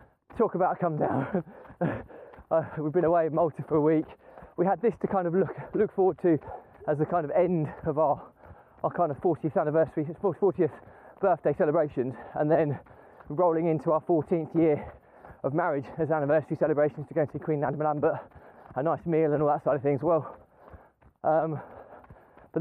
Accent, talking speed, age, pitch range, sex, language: British, 190 wpm, 20-39, 145-175 Hz, male, English